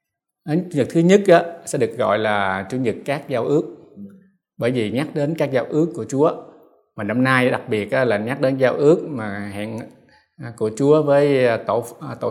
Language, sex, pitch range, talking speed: Vietnamese, male, 110-145 Hz, 200 wpm